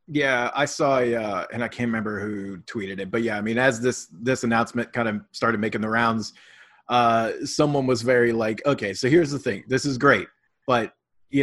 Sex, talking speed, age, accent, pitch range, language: male, 215 wpm, 30-49, American, 115-135 Hz, English